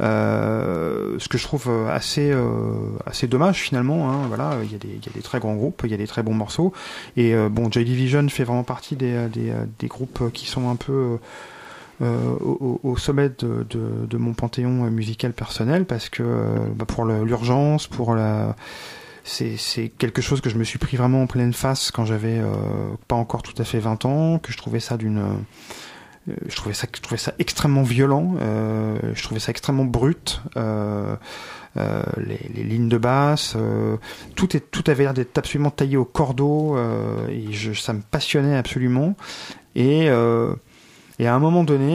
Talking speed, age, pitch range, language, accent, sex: 185 wpm, 30-49, 115-135 Hz, French, French, male